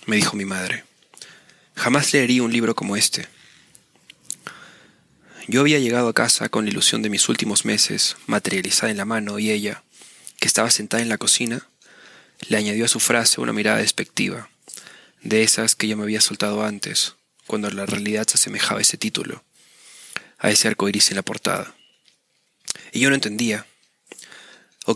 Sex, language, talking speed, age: male, Spanish, 170 wpm, 20-39